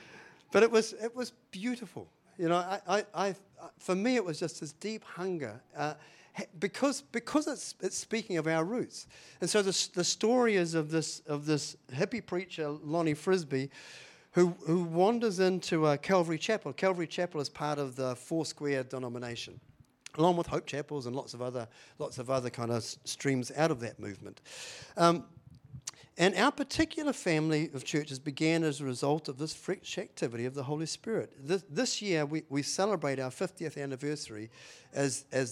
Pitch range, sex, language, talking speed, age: 140-185 Hz, male, English, 180 wpm, 50-69